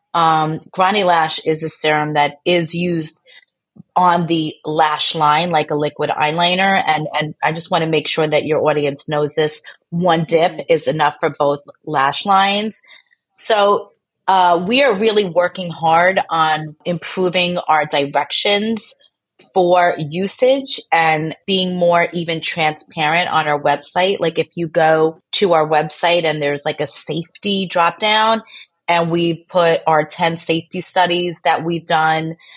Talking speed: 155 wpm